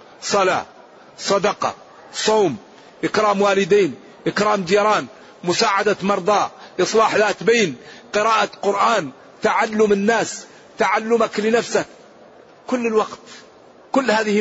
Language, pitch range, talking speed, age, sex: Arabic, 165-215 Hz, 90 wpm, 50-69, male